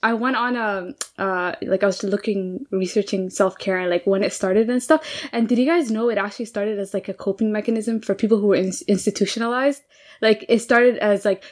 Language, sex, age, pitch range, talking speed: English, female, 10-29, 200-240 Hz, 210 wpm